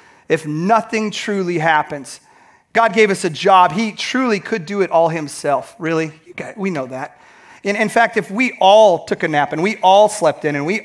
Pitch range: 160-215 Hz